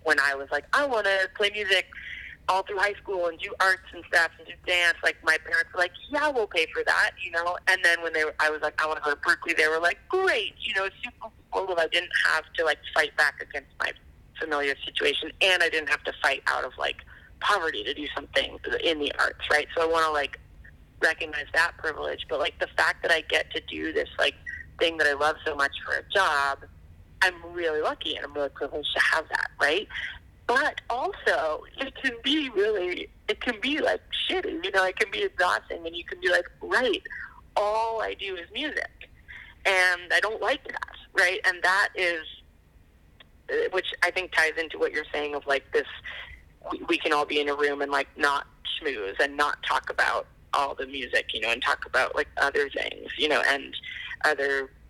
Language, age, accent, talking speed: English, 30-49, American, 220 wpm